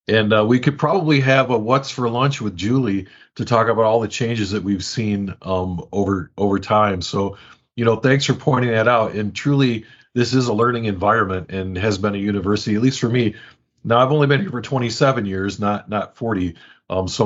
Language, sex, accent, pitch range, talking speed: English, male, American, 100-125 Hz, 215 wpm